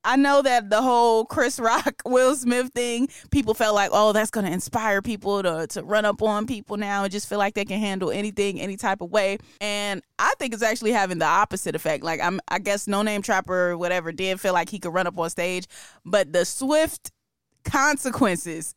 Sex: female